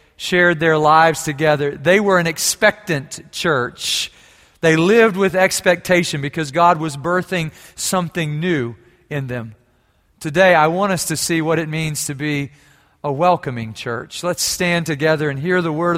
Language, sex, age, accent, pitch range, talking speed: English, male, 40-59, American, 150-185 Hz, 160 wpm